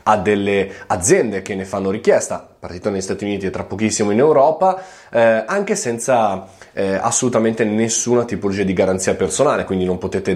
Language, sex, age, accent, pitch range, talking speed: Italian, male, 20-39, native, 95-125 Hz, 170 wpm